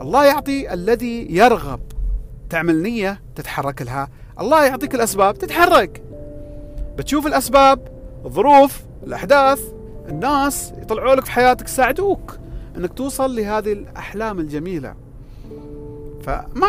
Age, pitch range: 40-59, 155-260 Hz